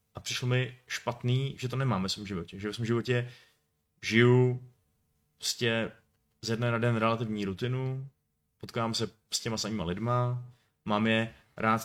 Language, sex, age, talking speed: Czech, male, 30-49, 155 wpm